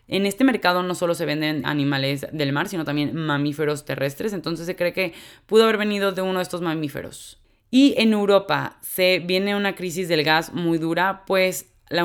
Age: 20-39